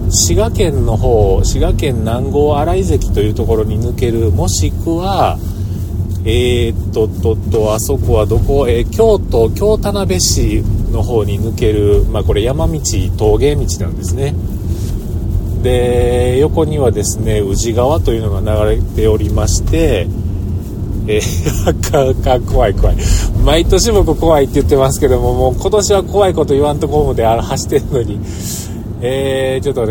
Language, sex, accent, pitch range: Japanese, male, native, 90-110 Hz